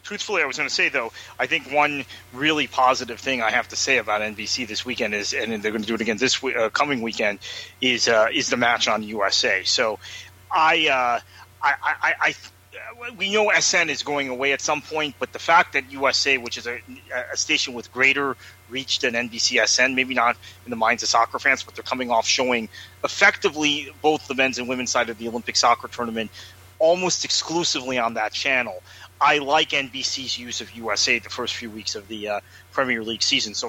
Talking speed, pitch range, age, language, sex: 215 wpm, 110-135 Hz, 30-49, English, male